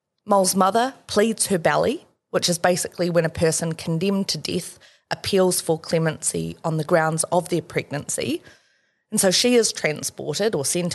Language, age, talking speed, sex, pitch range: English, 20-39, 165 wpm, female, 160-200 Hz